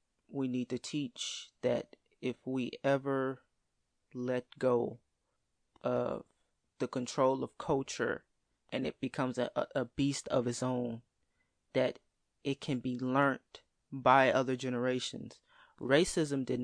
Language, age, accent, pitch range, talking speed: English, 20-39, American, 125-145 Hz, 125 wpm